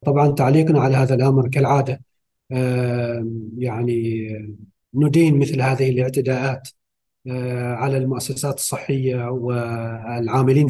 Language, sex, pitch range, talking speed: Arabic, male, 125-145 Hz, 95 wpm